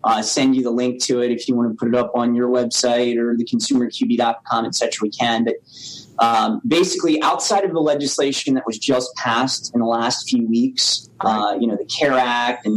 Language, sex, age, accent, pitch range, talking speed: English, male, 30-49, American, 120-140 Hz, 215 wpm